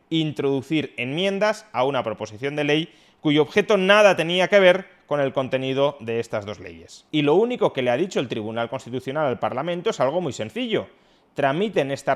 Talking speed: 190 wpm